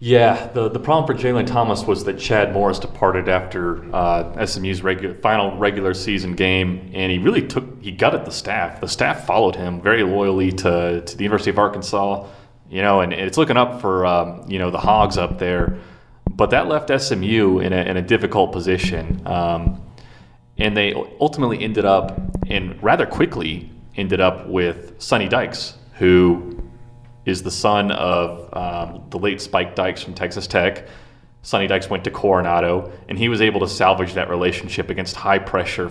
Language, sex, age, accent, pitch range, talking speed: English, male, 30-49, American, 90-100 Hz, 180 wpm